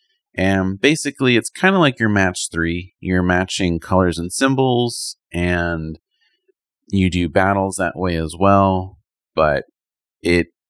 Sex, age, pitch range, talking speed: male, 30-49, 85-115 Hz, 135 wpm